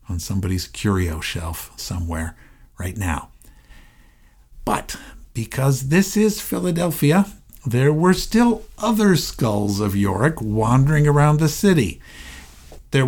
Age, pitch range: 60-79, 100-150 Hz